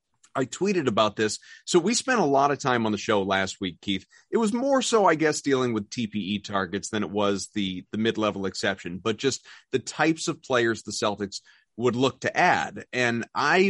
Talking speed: 210 wpm